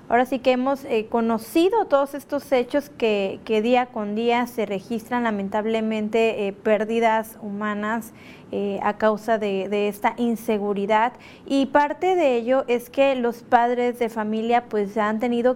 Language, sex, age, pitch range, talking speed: Spanish, female, 30-49, 215-250 Hz, 155 wpm